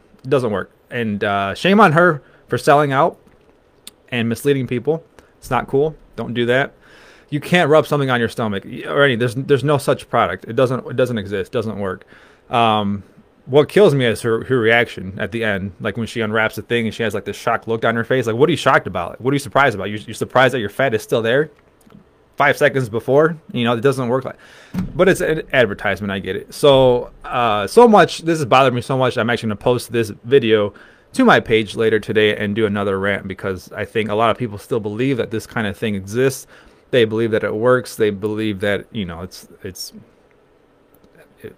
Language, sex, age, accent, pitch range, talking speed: English, male, 20-39, American, 105-130 Hz, 225 wpm